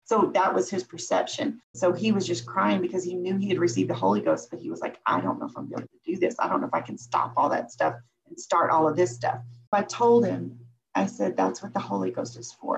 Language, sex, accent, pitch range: English, female, American, 145-225 Hz